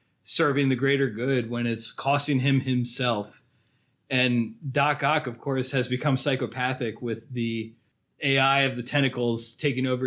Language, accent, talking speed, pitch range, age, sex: English, American, 150 wpm, 125-140 Hz, 20-39, male